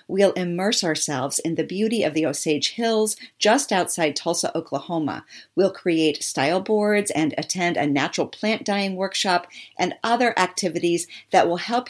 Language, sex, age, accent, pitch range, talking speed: English, female, 50-69, American, 155-205 Hz, 155 wpm